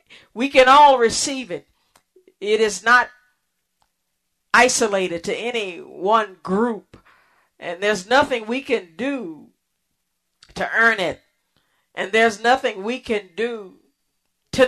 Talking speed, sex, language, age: 120 wpm, female, English, 40-59